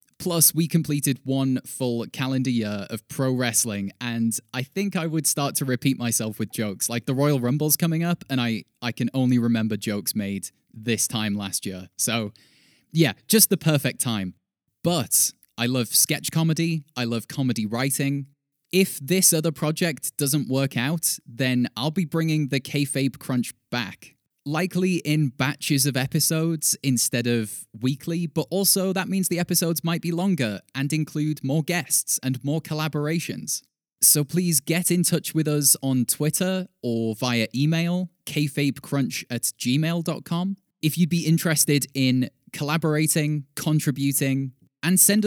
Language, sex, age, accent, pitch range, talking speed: English, male, 20-39, British, 125-165 Hz, 155 wpm